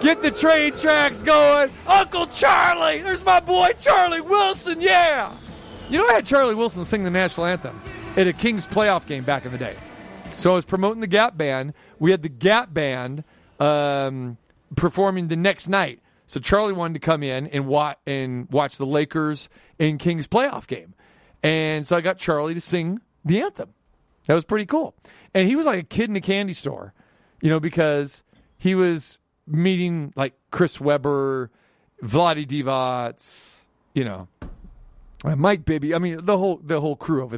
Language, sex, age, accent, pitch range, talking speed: English, male, 40-59, American, 135-195 Hz, 180 wpm